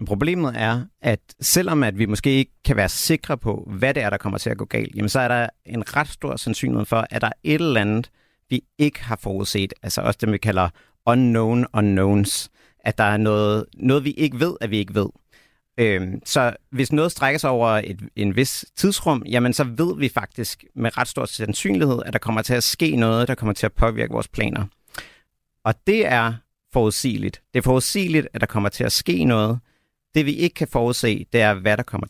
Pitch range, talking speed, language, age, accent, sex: 105-130 Hz, 210 wpm, Danish, 50-69, native, male